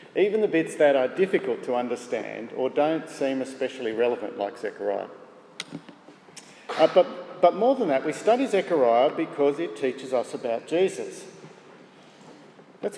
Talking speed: 145 wpm